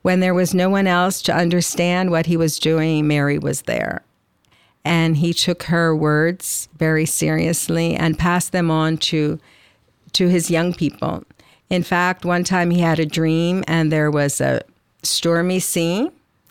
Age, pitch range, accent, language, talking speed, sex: 50-69, 155-180 Hz, American, English, 165 wpm, female